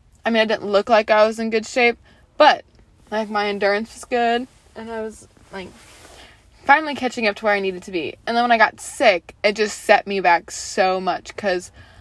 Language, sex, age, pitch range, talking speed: English, female, 20-39, 180-220 Hz, 220 wpm